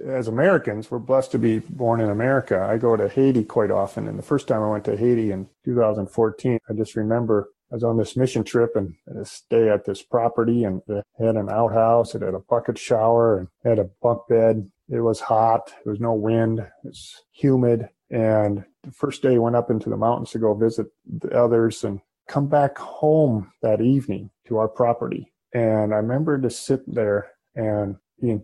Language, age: English, 30-49